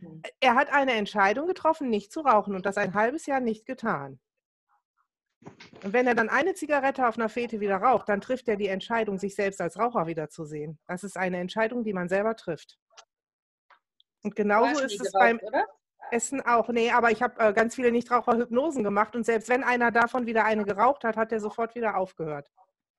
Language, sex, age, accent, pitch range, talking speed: German, female, 40-59, German, 195-250 Hz, 190 wpm